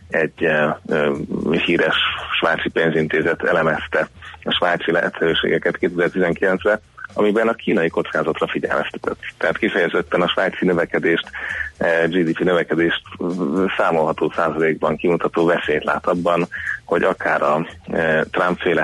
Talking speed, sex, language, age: 100 wpm, male, Hungarian, 30-49